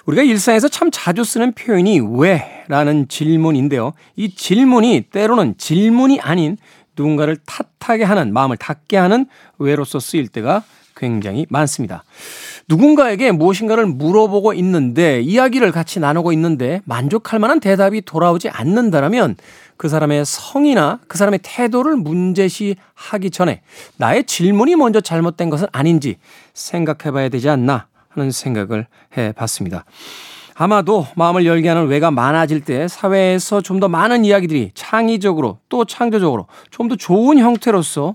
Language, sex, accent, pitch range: Korean, male, native, 145-200 Hz